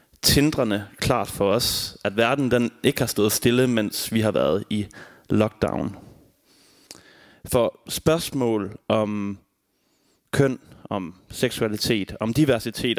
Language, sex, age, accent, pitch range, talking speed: English, male, 30-49, Danish, 110-135 Hz, 115 wpm